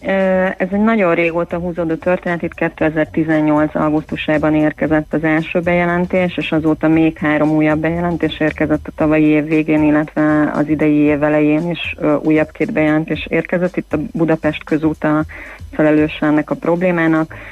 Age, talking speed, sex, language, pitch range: 30-49, 145 wpm, female, Hungarian, 150-155 Hz